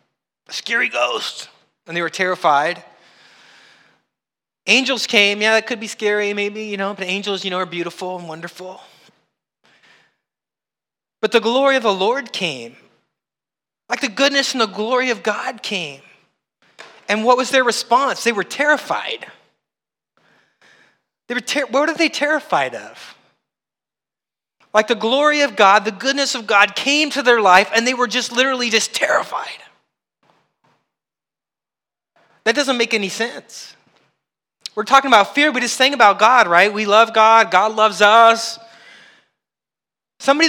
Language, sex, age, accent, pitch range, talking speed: English, male, 30-49, American, 190-250 Hz, 145 wpm